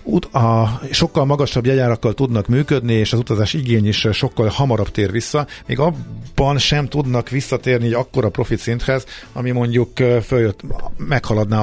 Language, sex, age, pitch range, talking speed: Hungarian, male, 50-69, 95-120 Hz, 145 wpm